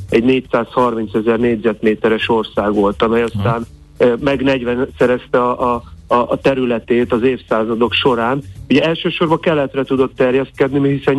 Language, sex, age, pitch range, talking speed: Hungarian, male, 40-59, 115-135 Hz, 125 wpm